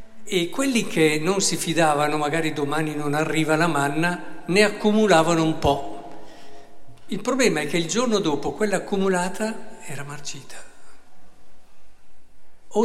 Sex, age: male, 50-69